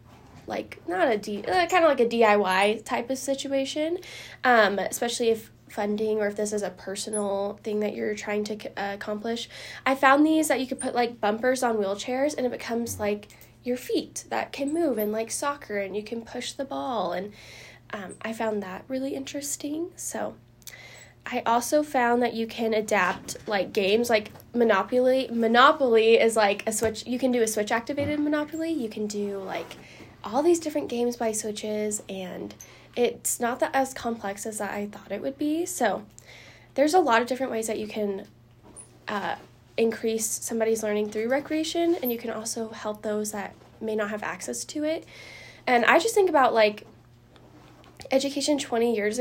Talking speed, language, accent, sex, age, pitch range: 180 wpm, English, American, female, 10-29, 210-265 Hz